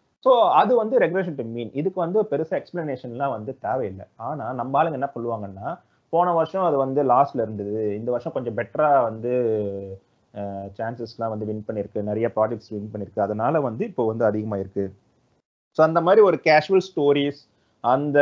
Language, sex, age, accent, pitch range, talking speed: Tamil, male, 30-49, native, 115-165 Hz, 160 wpm